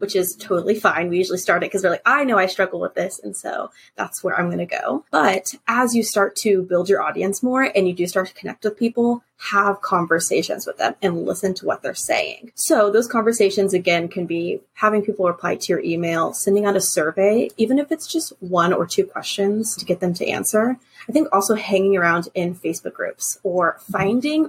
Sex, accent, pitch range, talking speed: female, American, 185-235 Hz, 225 wpm